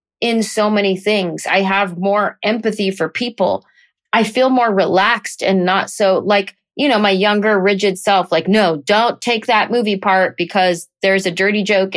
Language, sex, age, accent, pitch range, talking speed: English, female, 20-39, American, 180-215 Hz, 180 wpm